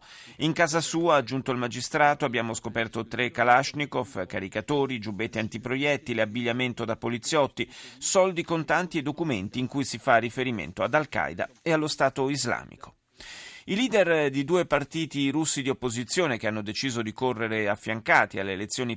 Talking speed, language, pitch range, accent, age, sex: 150 wpm, Italian, 110-155 Hz, native, 40-59, male